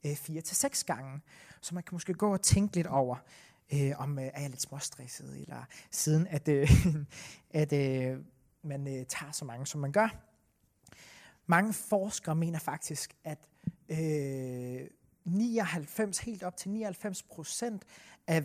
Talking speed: 155 wpm